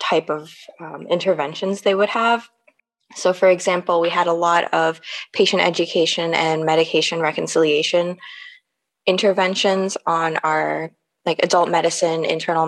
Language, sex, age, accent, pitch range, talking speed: English, female, 20-39, American, 160-195 Hz, 130 wpm